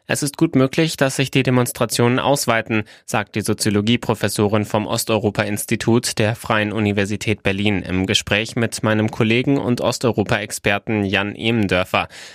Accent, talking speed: German, 130 wpm